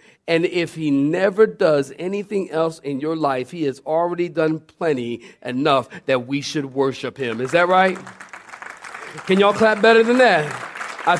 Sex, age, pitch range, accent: male, 40-59, 150-240 Hz, American